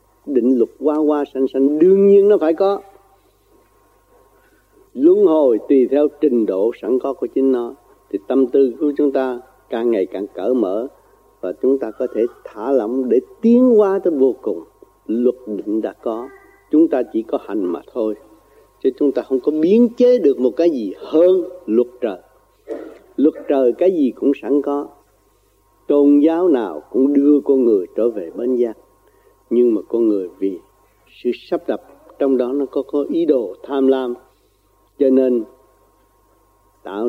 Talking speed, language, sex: 175 wpm, Vietnamese, male